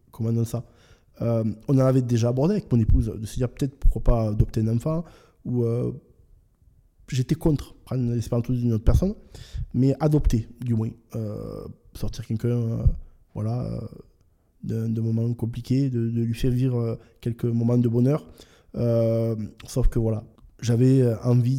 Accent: French